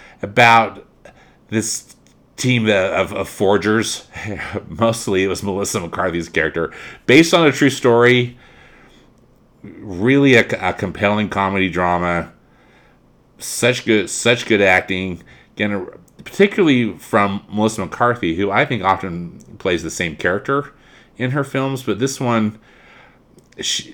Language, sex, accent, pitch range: English, male, American, 95-125 Hz